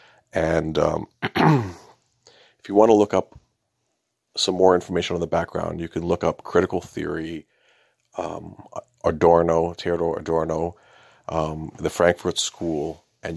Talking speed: 130 wpm